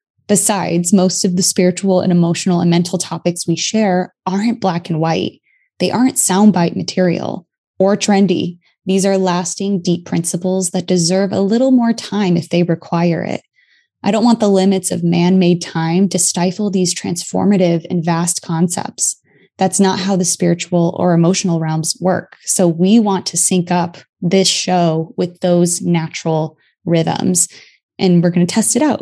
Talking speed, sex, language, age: 165 wpm, female, English, 20-39